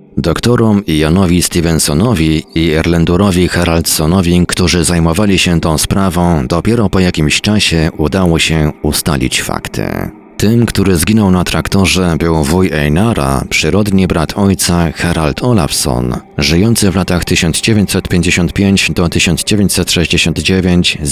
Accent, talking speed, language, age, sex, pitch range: native, 100 wpm, Polish, 40-59, male, 80-95 Hz